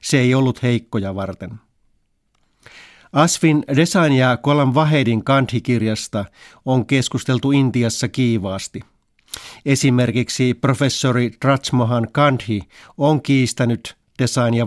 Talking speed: 85 wpm